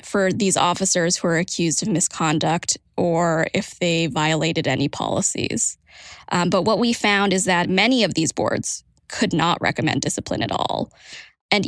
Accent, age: American, 20-39